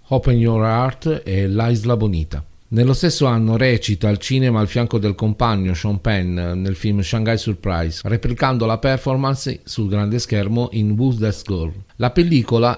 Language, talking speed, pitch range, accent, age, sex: Italian, 155 wpm, 95-115 Hz, native, 40-59, male